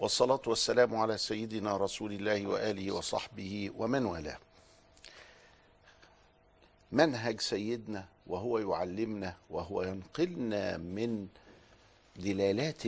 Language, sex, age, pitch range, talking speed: Arabic, male, 50-69, 95-130 Hz, 85 wpm